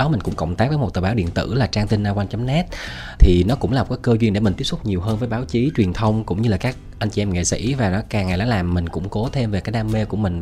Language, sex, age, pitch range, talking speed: Vietnamese, male, 20-39, 95-120 Hz, 340 wpm